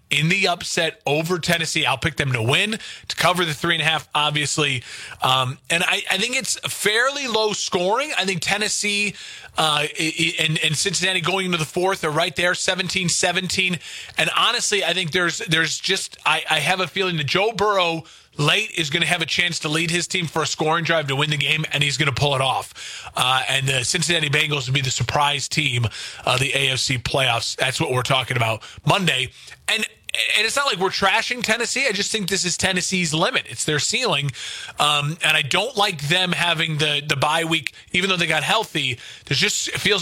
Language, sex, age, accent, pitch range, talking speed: English, male, 30-49, American, 140-180 Hz, 215 wpm